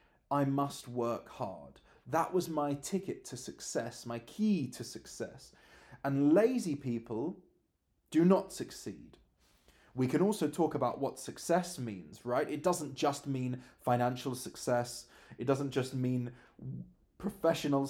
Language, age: English, 30-49